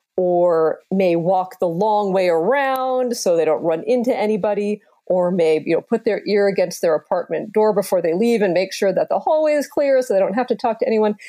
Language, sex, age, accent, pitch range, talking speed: English, female, 40-59, American, 175-230 Hz, 230 wpm